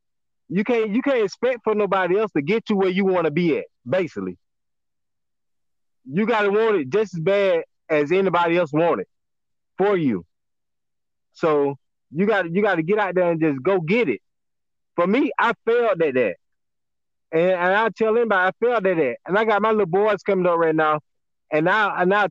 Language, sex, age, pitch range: English, male, 30-49, 165-215 Hz